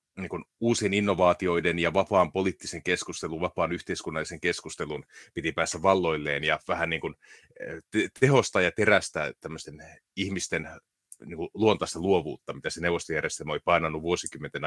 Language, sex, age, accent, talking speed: Finnish, male, 30-49, native, 125 wpm